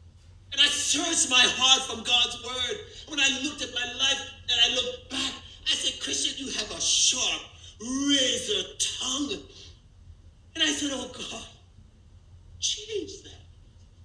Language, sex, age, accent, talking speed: English, male, 50-69, American, 145 wpm